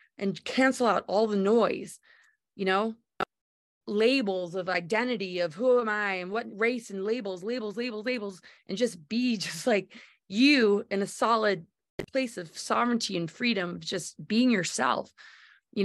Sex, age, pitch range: female, 20-39, 180-230 Hz